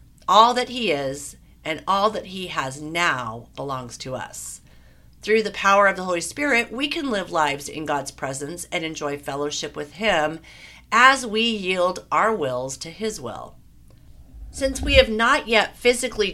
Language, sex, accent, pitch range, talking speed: English, female, American, 140-200 Hz, 170 wpm